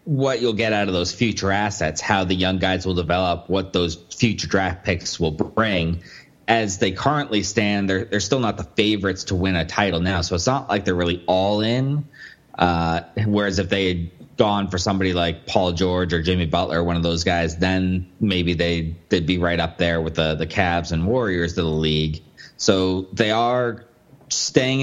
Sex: male